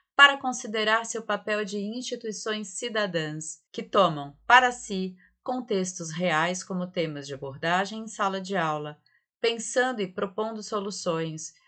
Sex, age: female, 30-49